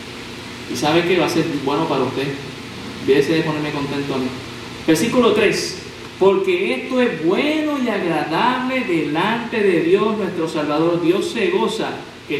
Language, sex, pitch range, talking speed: Spanish, male, 135-220 Hz, 160 wpm